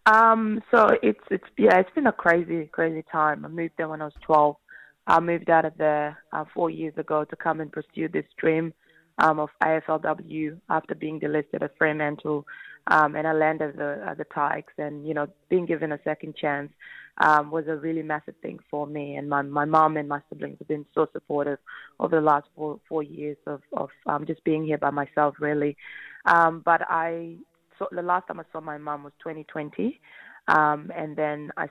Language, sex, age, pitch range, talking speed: English, female, 20-39, 145-160 Hz, 205 wpm